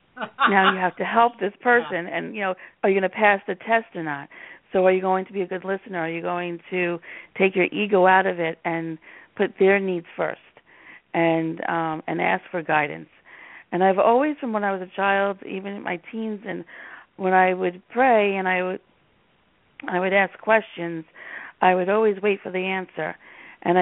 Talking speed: 205 wpm